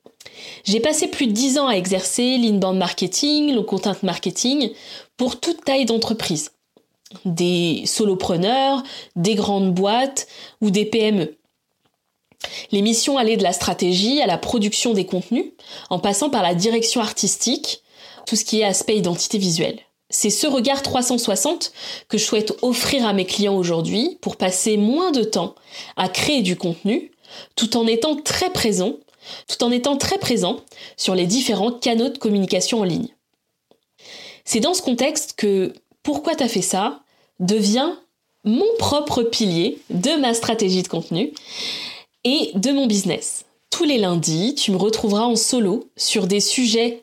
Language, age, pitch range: French, 20-39, 200-260 Hz